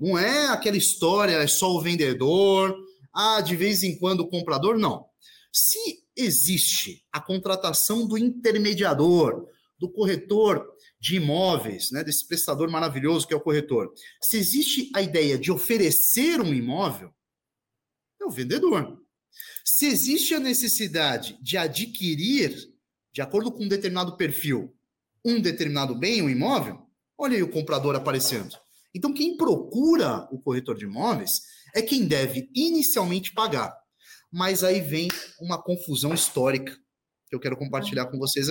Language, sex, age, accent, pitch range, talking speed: Portuguese, male, 30-49, Brazilian, 150-220 Hz, 140 wpm